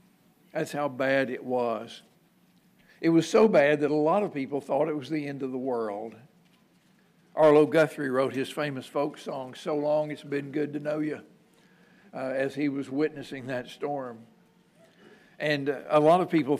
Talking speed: 180 wpm